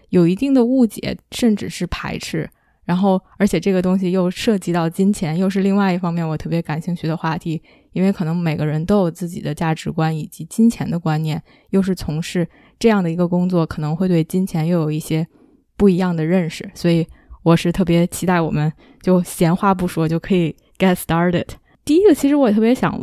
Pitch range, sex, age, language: 170-205 Hz, female, 20-39, Chinese